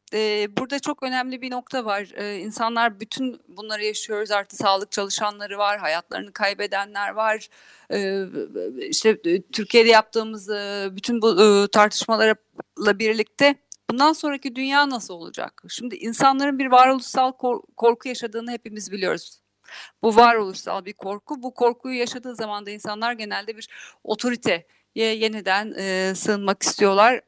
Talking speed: 115 wpm